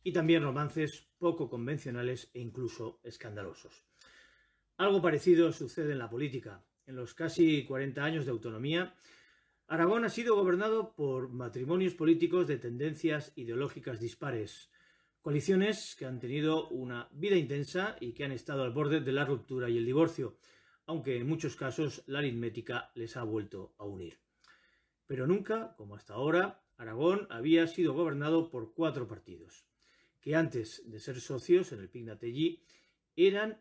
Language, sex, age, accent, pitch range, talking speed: Spanish, male, 40-59, Spanish, 120-165 Hz, 150 wpm